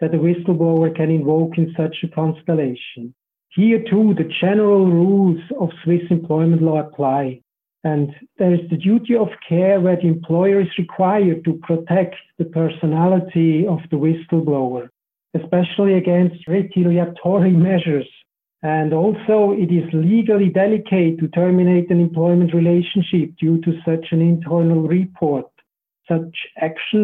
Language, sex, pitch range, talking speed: English, male, 160-190 Hz, 135 wpm